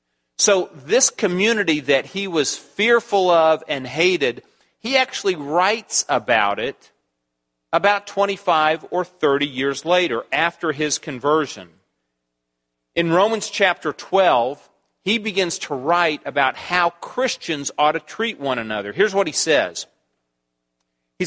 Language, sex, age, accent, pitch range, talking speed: English, male, 40-59, American, 135-190 Hz, 125 wpm